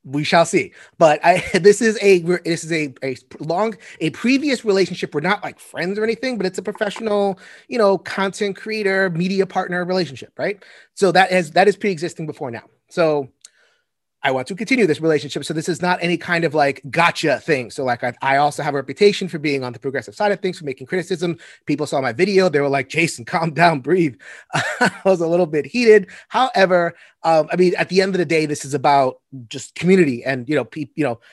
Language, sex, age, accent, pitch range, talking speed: English, male, 30-49, American, 135-190 Hz, 220 wpm